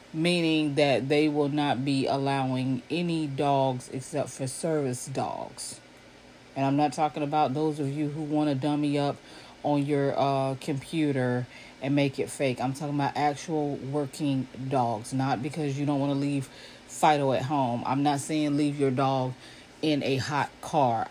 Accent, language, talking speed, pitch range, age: American, English, 170 wpm, 135-155 Hz, 40-59